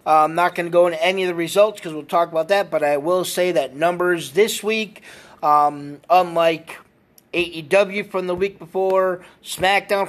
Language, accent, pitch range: English, American, 160-190 Hz